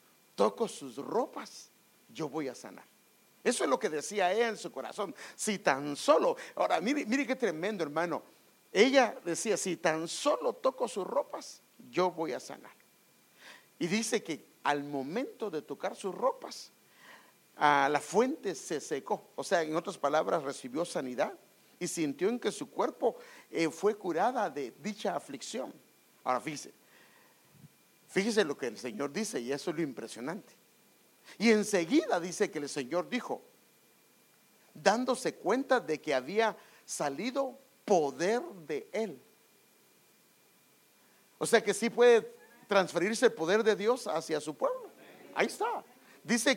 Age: 50-69